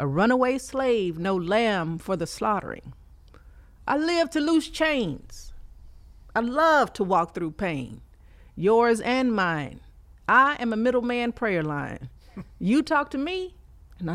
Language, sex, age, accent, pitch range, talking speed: English, female, 50-69, American, 170-250 Hz, 140 wpm